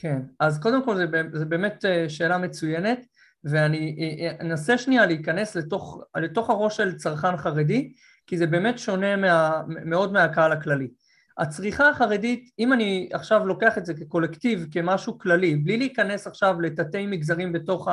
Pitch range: 160-215 Hz